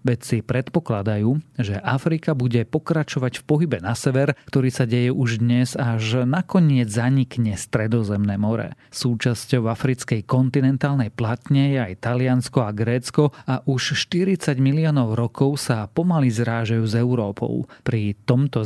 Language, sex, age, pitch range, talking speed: Slovak, male, 40-59, 115-140 Hz, 135 wpm